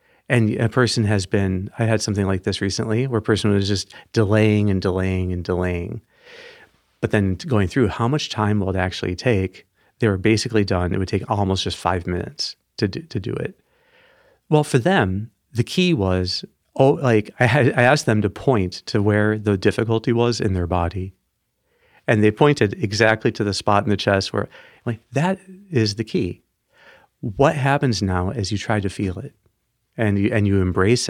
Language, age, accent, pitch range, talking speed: English, 40-59, American, 95-120 Hz, 195 wpm